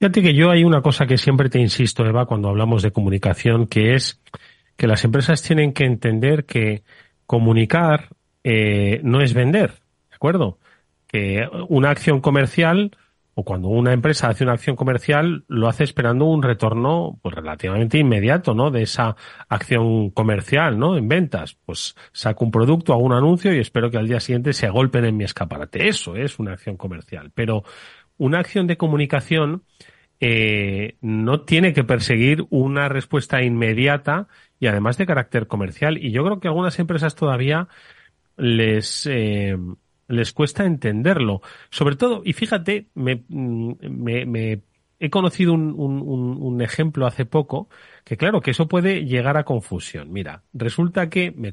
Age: 40-59